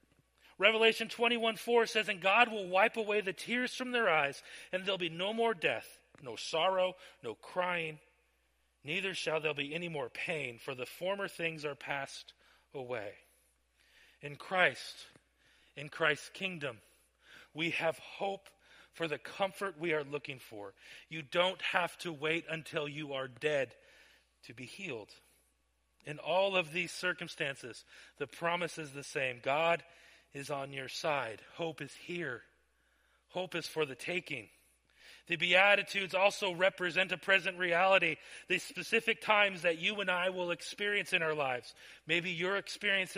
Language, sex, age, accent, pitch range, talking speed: English, male, 40-59, American, 150-195 Hz, 155 wpm